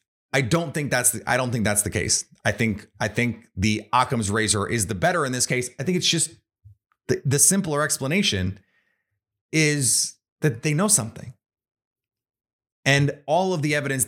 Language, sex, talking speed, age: English, male, 180 wpm, 30-49